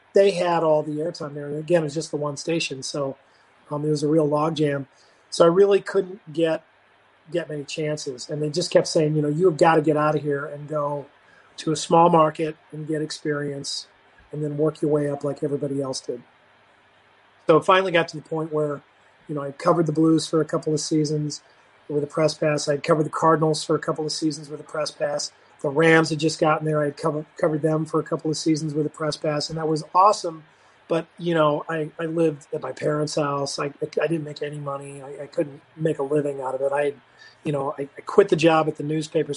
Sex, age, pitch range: male, 30-49, 145-160 Hz